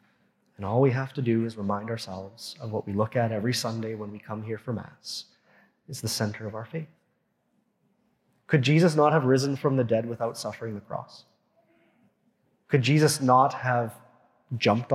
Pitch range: 120-140 Hz